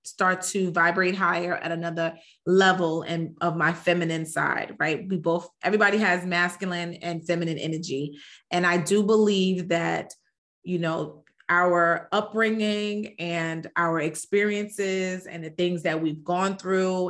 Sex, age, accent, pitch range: female, 30-49, American, 170-190 Hz